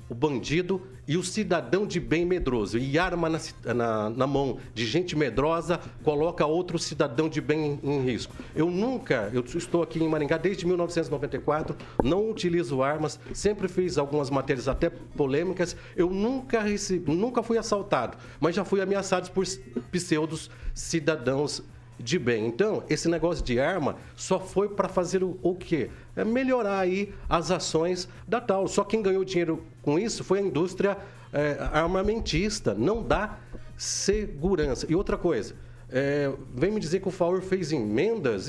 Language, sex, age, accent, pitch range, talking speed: Portuguese, male, 60-79, Brazilian, 145-185 Hz, 160 wpm